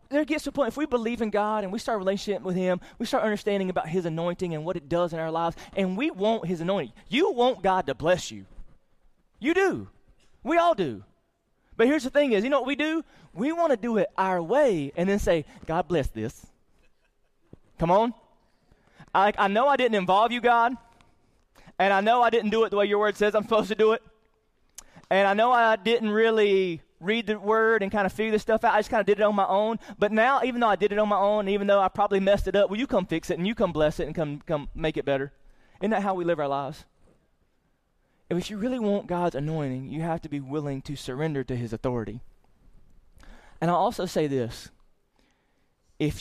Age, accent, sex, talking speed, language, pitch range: 20-39, American, male, 235 wpm, English, 155-220 Hz